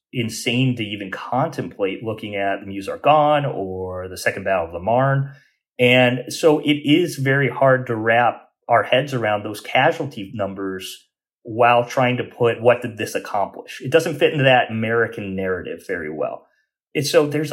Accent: American